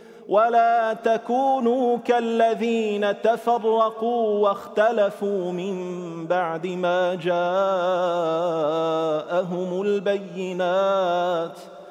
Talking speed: 50 wpm